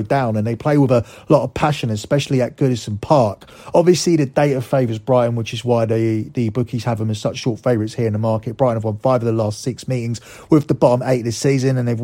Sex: male